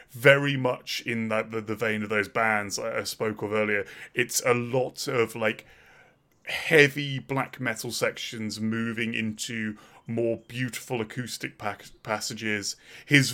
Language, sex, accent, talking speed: English, male, British, 140 wpm